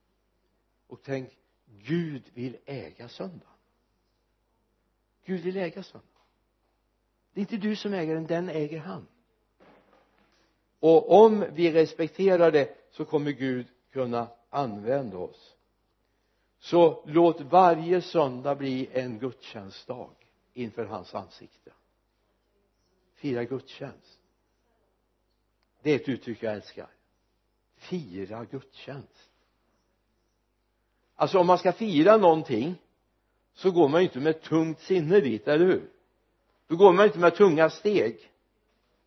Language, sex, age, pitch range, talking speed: Swedish, male, 60-79, 115-170 Hz, 115 wpm